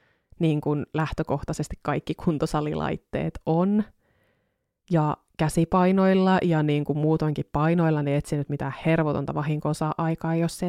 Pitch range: 150-175 Hz